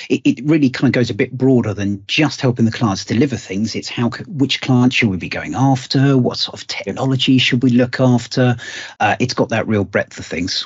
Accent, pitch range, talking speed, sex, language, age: British, 105-125 Hz, 225 wpm, male, English, 40-59